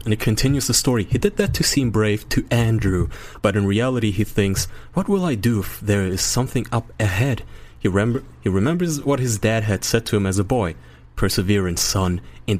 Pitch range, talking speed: 100-135 Hz, 215 wpm